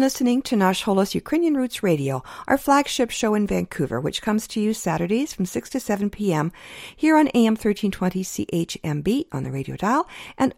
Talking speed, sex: 175 wpm, female